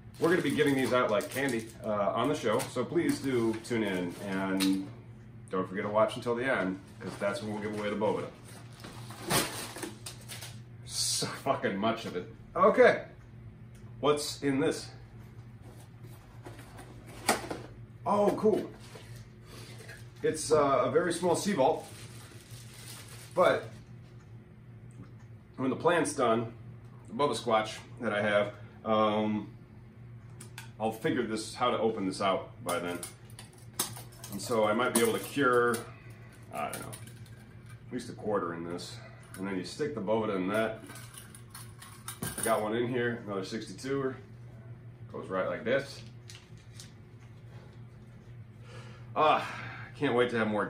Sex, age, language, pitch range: male, 30-49, English, 110-120 Hz